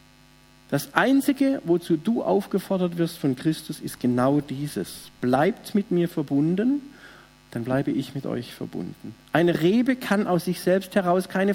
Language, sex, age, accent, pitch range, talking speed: German, male, 50-69, German, 120-190 Hz, 150 wpm